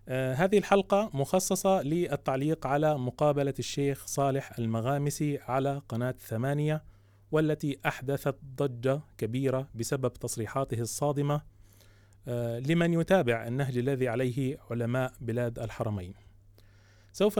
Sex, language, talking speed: male, Arabic, 95 wpm